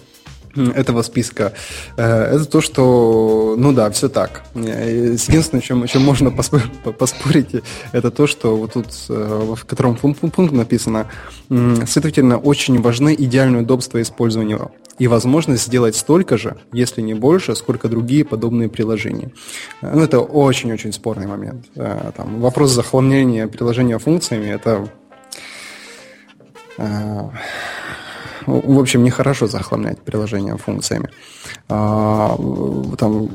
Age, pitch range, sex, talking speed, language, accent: 20-39, 110-130 Hz, male, 110 wpm, Russian, native